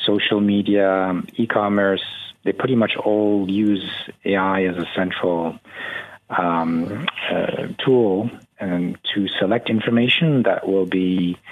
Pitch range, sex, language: 95-120 Hz, male, English